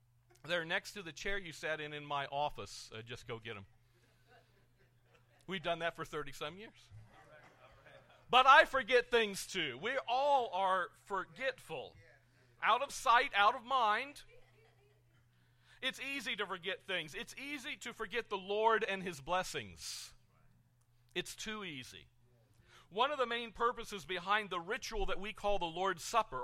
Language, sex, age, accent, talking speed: English, male, 40-59, American, 155 wpm